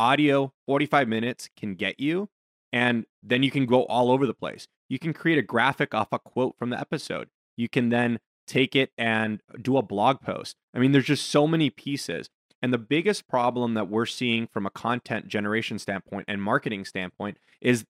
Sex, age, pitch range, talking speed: male, 20-39, 105-140 Hz, 200 wpm